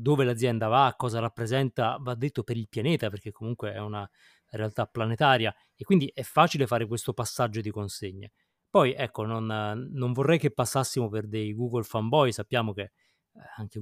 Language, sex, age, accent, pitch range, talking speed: Italian, male, 30-49, native, 110-145 Hz, 170 wpm